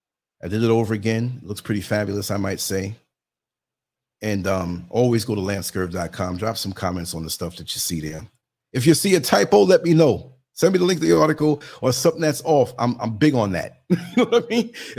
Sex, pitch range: male, 100-135 Hz